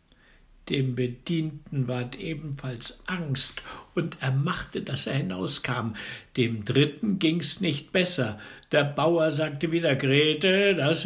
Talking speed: 120 wpm